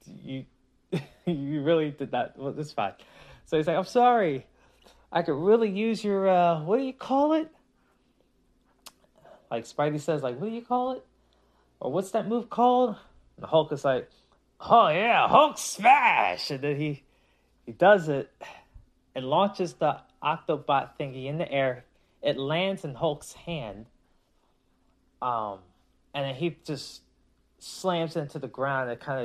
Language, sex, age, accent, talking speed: English, male, 20-39, American, 160 wpm